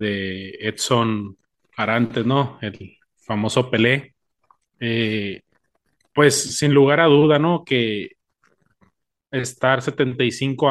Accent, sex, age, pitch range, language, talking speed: Mexican, male, 30-49, 115-135 Hz, Spanish, 95 wpm